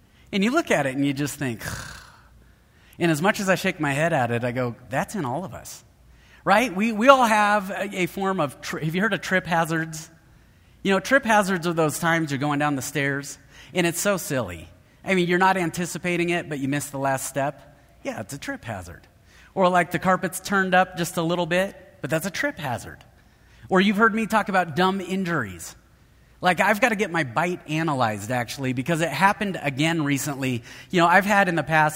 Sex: male